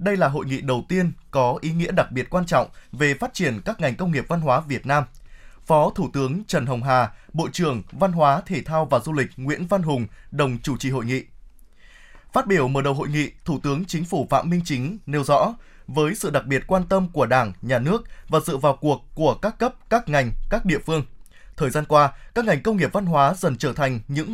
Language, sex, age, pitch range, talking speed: Vietnamese, male, 20-39, 135-185 Hz, 240 wpm